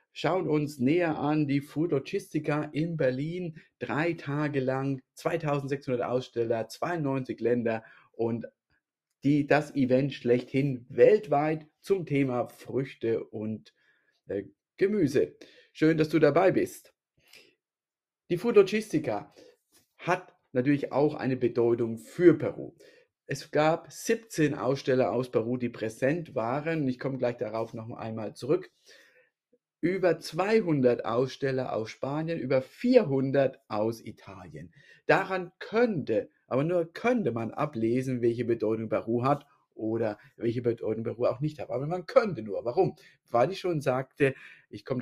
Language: German